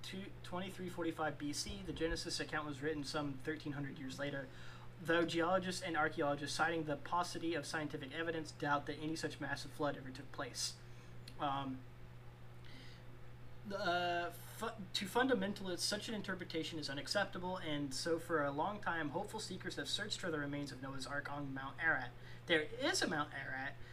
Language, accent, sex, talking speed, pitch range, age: English, American, male, 165 wpm, 130-165 Hz, 30-49